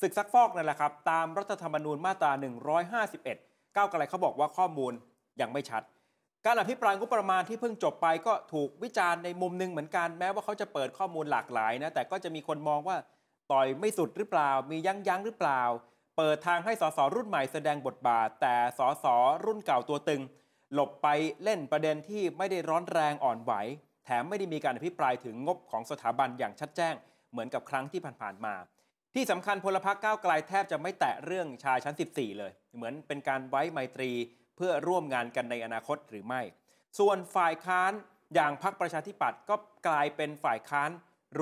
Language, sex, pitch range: Thai, male, 145-190 Hz